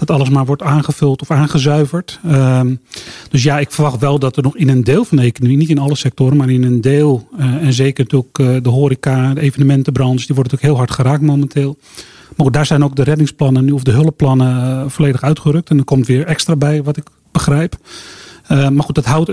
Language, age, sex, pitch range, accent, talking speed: Dutch, 40-59, male, 135-150 Hz, Dutch, 215 wpm